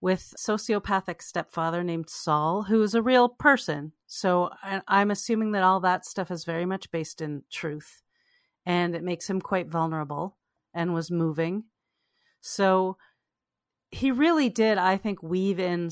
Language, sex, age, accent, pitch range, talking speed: English, female, 40-59, American, 160-220 Hz, 155 wpm